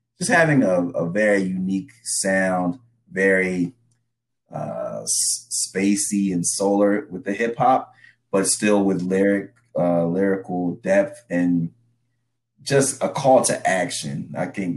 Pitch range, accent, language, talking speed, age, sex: 85-115 Hz, American, English, 125 wpm, 30-49, male